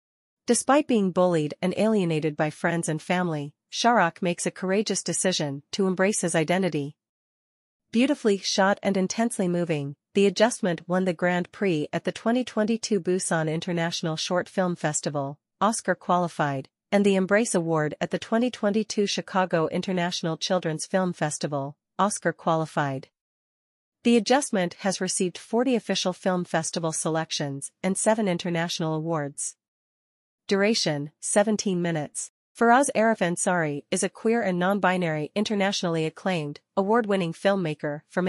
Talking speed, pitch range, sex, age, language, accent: 130 wpm, 160-200 Hz, female, 40-59, English, American